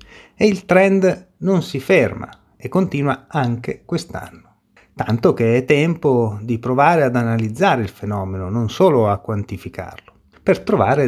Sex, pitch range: male, 110-160 Hz